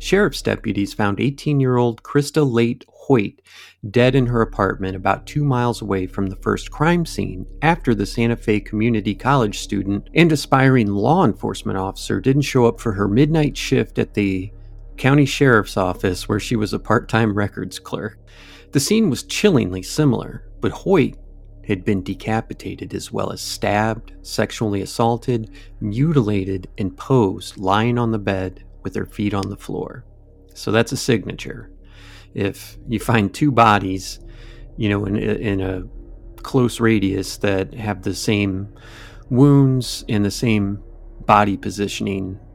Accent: American